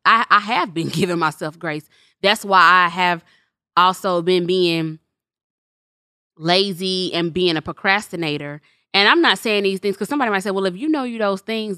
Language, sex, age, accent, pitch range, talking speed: English, female, 20-39, American, 170-200 Hz, 185 wpm